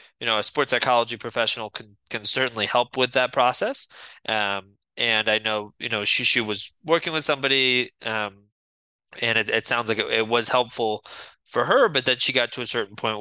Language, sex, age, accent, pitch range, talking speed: English, male, 20-39, American, 105-120 Hz, 205 wpm